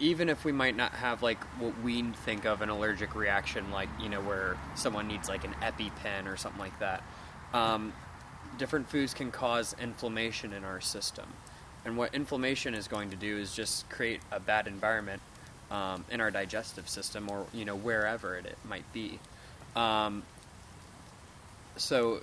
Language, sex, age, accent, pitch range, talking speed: English, male, 20-39, American, 100-120 Hz, 170 wpm